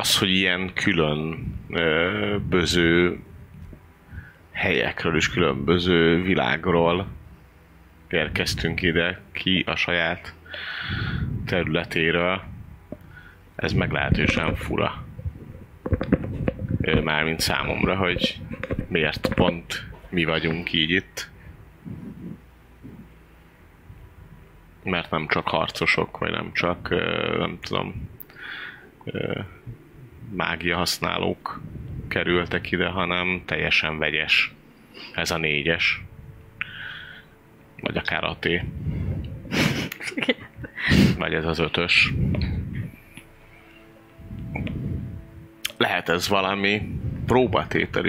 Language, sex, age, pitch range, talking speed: Hungarian, male, 30-49, 80-100 Hz, 70 wpm